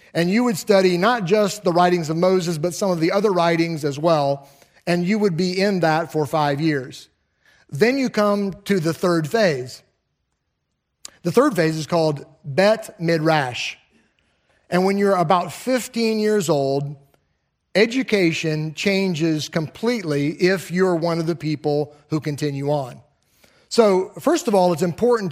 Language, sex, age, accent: English, male, 40-59, American